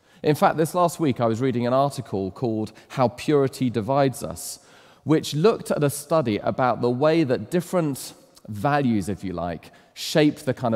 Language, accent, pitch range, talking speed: English, British, 105-145 Hz, 180 wpm